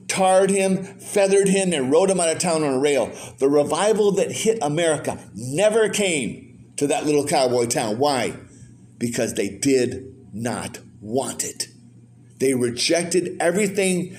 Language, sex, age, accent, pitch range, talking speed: English, male, 50-69, American, 120-180 Hz, 150 wpm